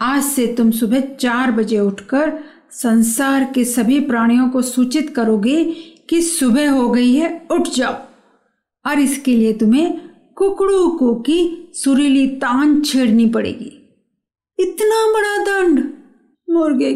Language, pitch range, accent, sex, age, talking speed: Hindi, 240-325 Hz, native, female, 50-69, 125 wpm